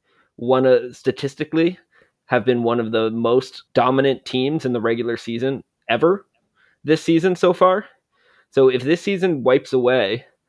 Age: 20-39